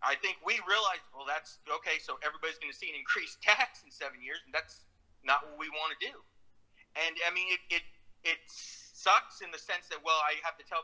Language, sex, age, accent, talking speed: English, male, 30-49, American, 235 wpm